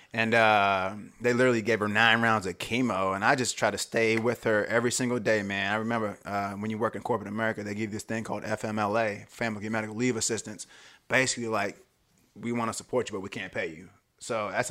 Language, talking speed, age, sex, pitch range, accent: English, 230 wpm, 30-49, male, 105-115 Hz, American